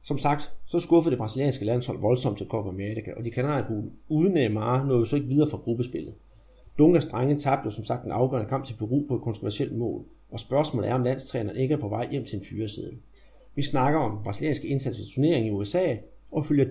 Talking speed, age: 220 wpm, 30-49